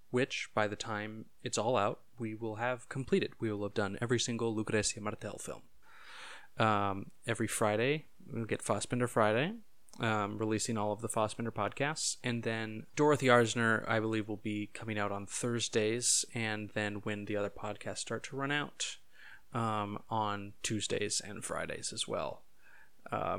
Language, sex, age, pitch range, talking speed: English, male, 20-39, 110-125 Hz, 165 wpm